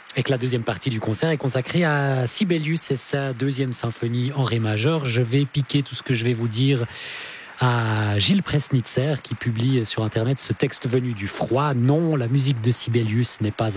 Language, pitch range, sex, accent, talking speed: English, 105-135 Hz, male, French, 205 wpm